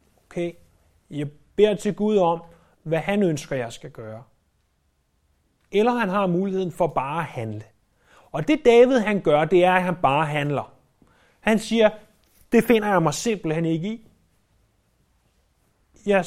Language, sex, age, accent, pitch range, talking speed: Danish, male, 30-49, native, 130-200 Hz, 150 wpm